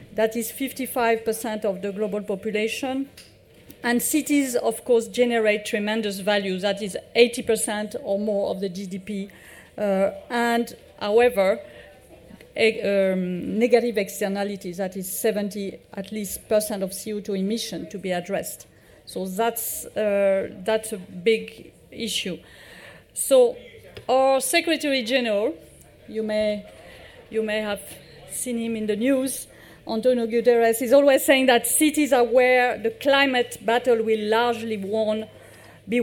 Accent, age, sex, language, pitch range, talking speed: French, 50-69, female, English, 210-255 Hz, 130 wpm